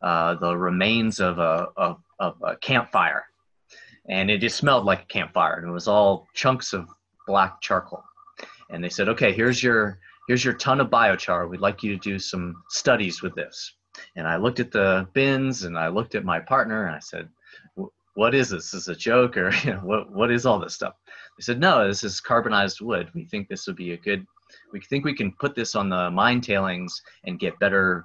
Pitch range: 90-125 Hz